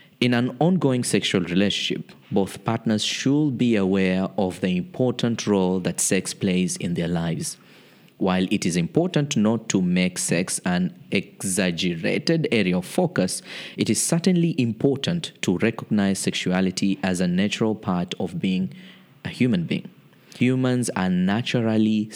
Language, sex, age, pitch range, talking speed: English, male, 20-39, 95-155 Hz, 140 wpm